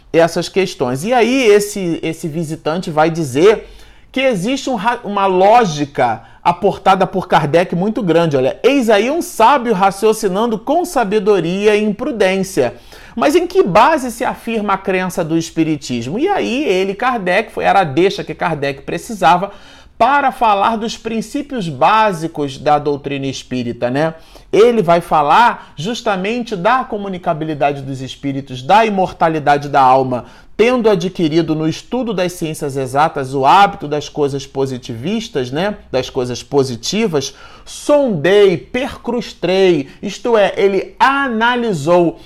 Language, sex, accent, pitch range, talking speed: Portuguese, male, Brazilian, 160-225 Hz, 130 wpm